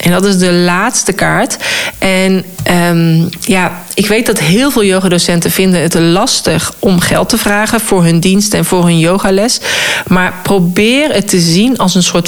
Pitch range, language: 170-215 Hz, Dutch